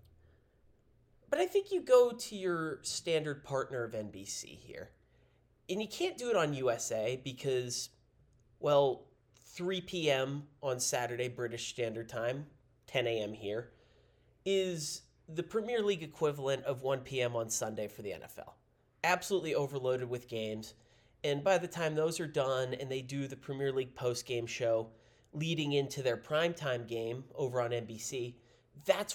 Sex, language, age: male, English, 30-49